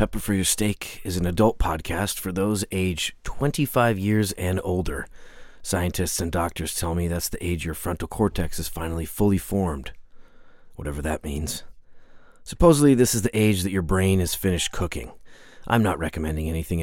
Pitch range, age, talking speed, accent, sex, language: 85-105 Hz, 40-59, 170 wpm, American, male, English